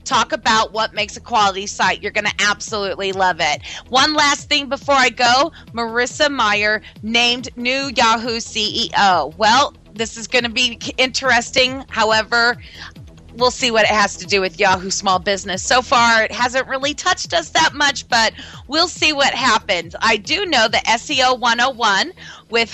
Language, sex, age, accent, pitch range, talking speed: English, female, 30-49, American, 205-265 Hz, 170 wpm